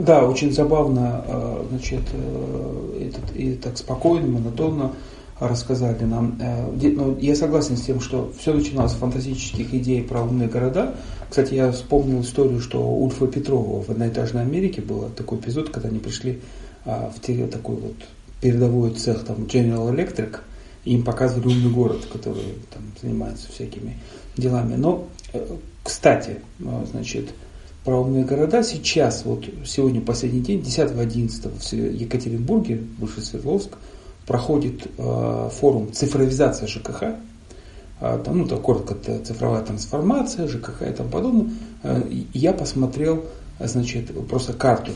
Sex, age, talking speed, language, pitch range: male, 40-59, 135 wpm, Russian, 110-130 Hz